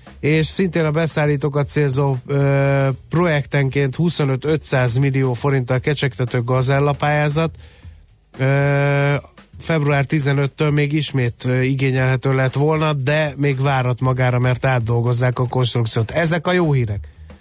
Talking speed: 115 wpm